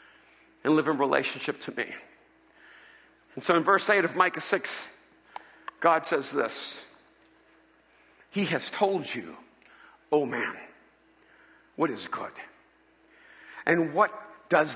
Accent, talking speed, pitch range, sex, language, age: American, 120 wpm, 240-310 Hz, male, English, 50-69